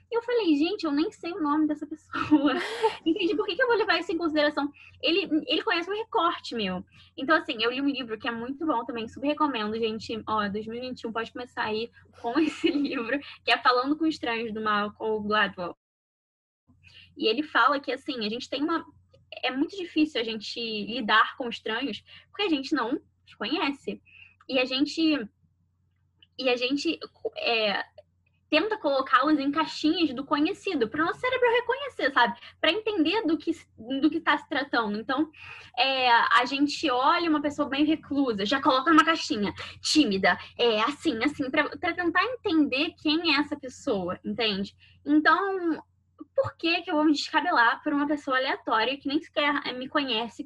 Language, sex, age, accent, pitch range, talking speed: Portuguese, female, 10-29, Brazilian, 250-320 Hz, 175 wpm